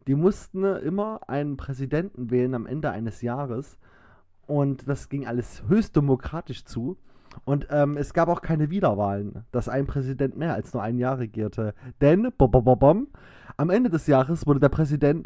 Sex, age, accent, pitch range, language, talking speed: male, 20-39, German, 130-170 Hz, German, 160 wpm